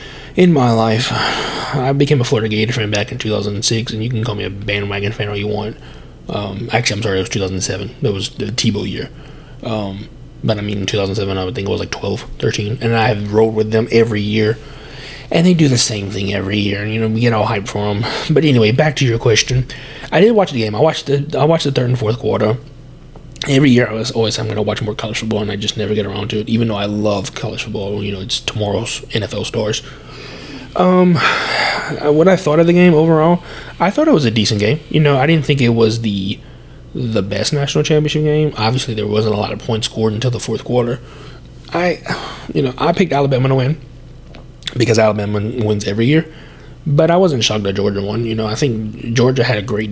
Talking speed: 235 wpm